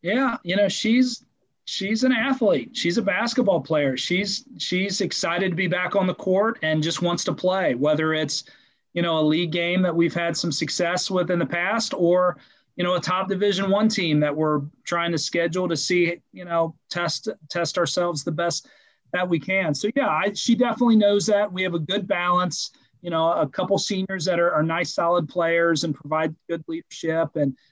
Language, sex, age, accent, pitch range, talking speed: English, male, 30-49, American, 155-190 Hz, 205 wpm